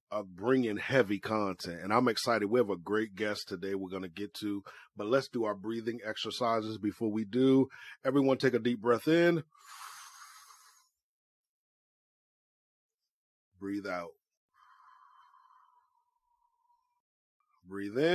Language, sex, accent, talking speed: English, male, American, 120 wpm